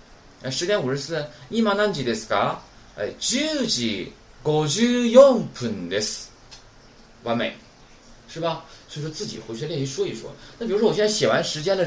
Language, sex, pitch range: Chinese, male, 130-215 Hz